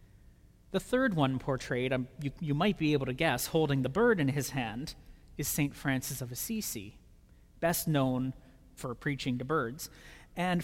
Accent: American